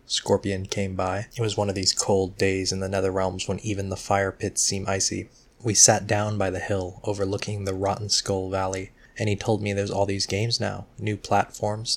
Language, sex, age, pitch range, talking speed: English, male, 20-39, 100-110 Hz, 215 wpm